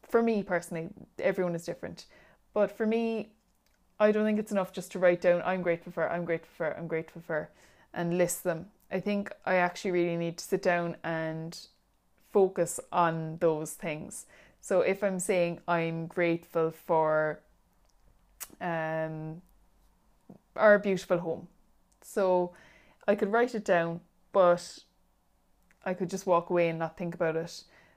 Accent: Irish